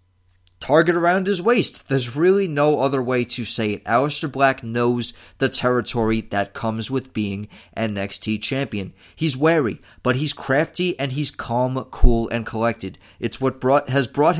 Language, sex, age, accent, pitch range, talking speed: English, male, 30-49, American, 115-145 Hz, 165 wpm